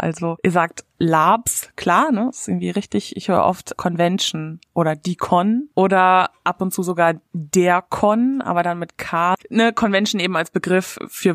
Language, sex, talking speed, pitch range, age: German, female, 180 wpm, 170-215 Hz, 20-39